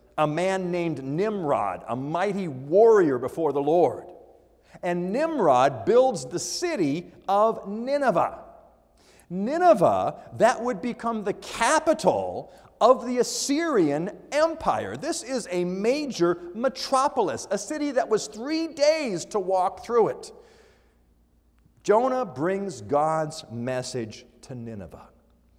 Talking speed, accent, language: 115 wpm, American, English